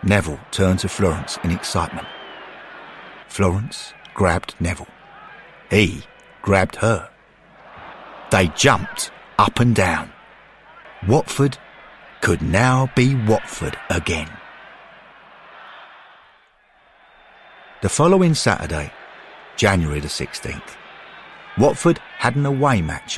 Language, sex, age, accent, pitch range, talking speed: English, male, 50-69, British, 85-120 Hz, 90 wpm